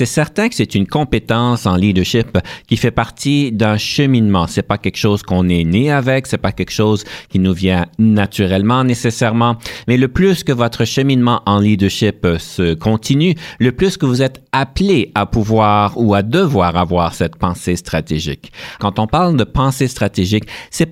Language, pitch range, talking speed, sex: French, 100-135 Hz, 180 wpm, male